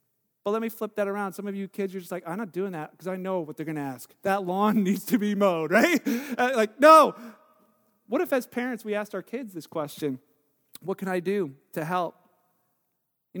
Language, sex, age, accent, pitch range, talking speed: English, male, 40-59, American, 190-250 Hz, 230 wpm